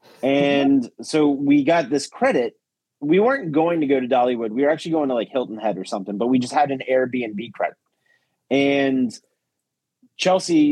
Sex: male